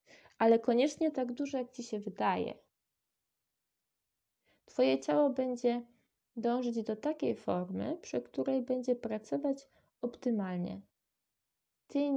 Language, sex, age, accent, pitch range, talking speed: Polish, female, 20-39, native, 200-245 Hz, 105 wpm